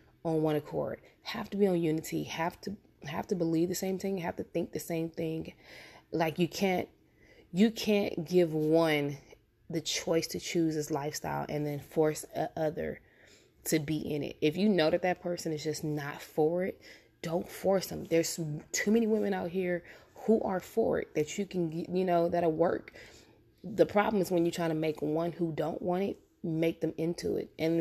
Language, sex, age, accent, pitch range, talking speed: English, female, 20-39, American, 155-175 Hz, 200 wpm